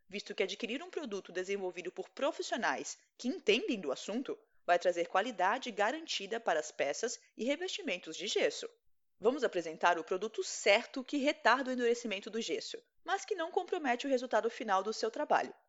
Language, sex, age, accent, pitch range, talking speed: Portuguese, female, 20-39, Brazilian, 210-335 Hz, 170 wpm